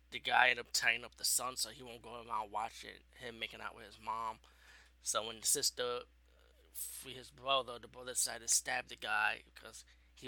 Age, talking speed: 20-39, 205 wpm